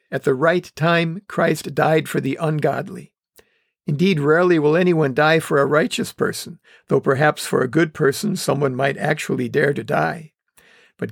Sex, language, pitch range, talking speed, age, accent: male, English, 150-175 Hz, 165 wpm, 50-69, American